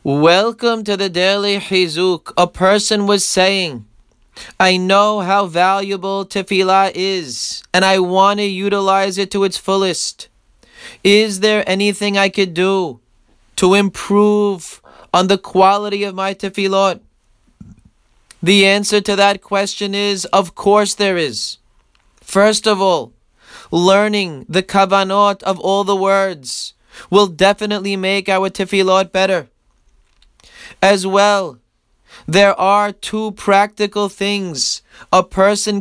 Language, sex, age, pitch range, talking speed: English, male, 20-39, 185-200 Hz, 120 wpm